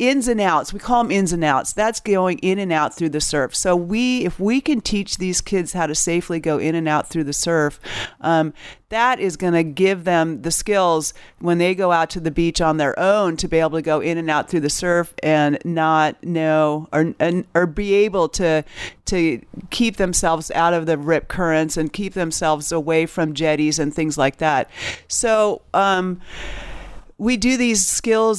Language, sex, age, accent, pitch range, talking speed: English, female, 40-59, American, 160-195 Hz, 205 wpm